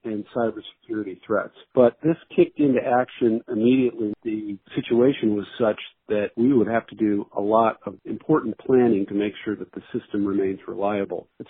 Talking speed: 170 wpm